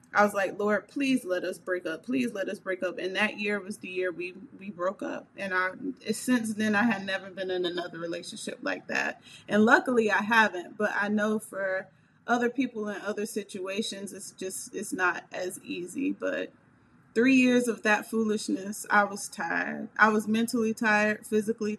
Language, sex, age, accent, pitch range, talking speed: English, female, 30-49, American, 195-230 Hz, 195 wpm